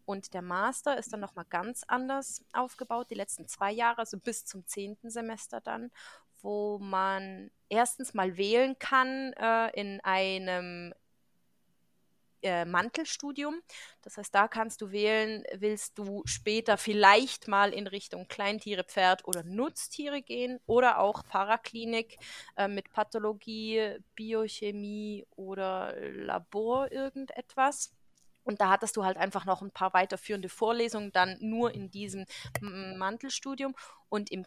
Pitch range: 195-235 Hz